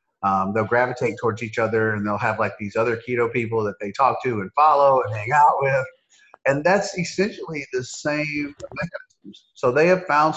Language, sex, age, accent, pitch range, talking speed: English, male, 30-49, American, 110-150 Hz, 190 wpm